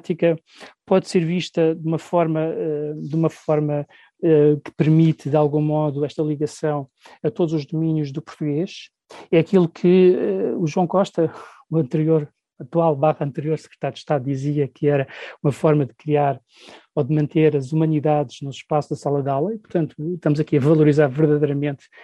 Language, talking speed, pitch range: Portuguese, 160 wpm, 150-170 Hz